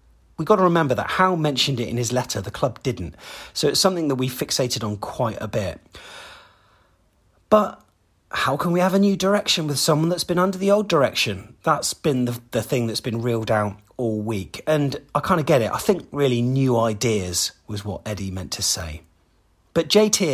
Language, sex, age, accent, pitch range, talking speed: English, male, 30-49, British, 105-145 Hz, 205 wpm